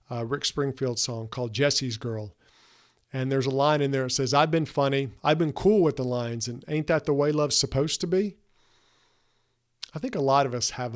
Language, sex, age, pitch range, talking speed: English, male, 50-69, 125-155 Hz, 220 wpm